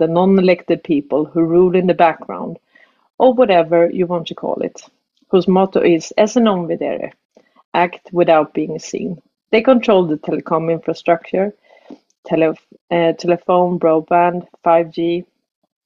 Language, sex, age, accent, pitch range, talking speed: Swedish, female, 40-59, native, 170-230 Hz, 125 wpm